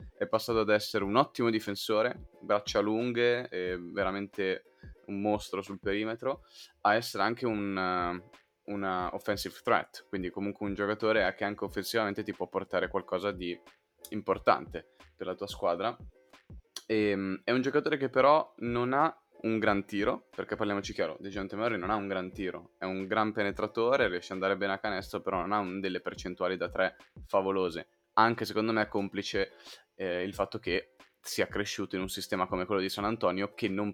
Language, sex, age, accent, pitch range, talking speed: Italian, male, 20-39, native, 95-110 Hz, 175 wpm